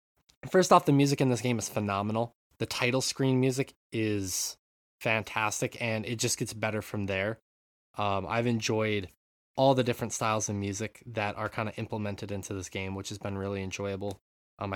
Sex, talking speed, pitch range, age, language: male, 185 wpm, 100-130 Hz, 20-39, English